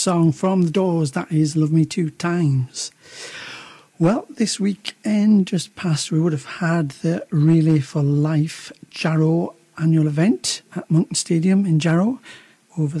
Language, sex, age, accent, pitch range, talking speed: English, male, 60-79, British, 150-175 Hz, 150 wpm